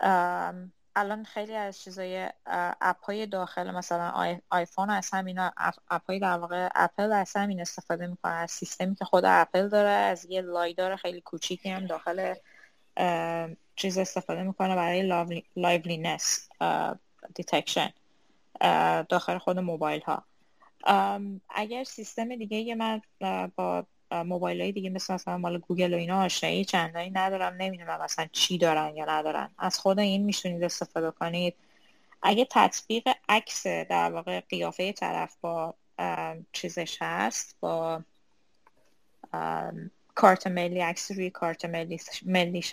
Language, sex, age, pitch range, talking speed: Persian, female, 20-39, 170-190 Hz, 130 wpm